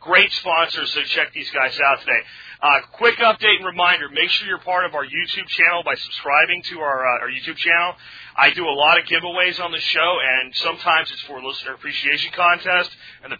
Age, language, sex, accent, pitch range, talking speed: 40-59, English, male, American, 140-180 Hz, 210 wpm